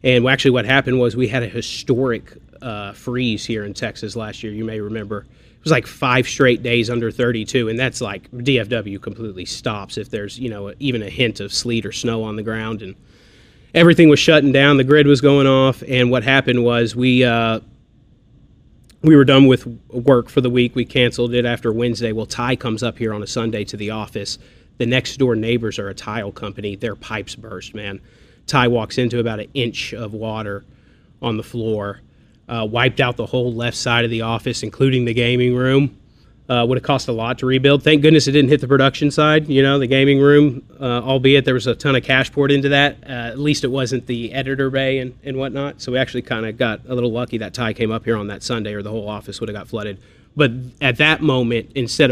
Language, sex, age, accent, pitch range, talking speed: English, male, 30-49, American, 110-130 Hz, 225 wpm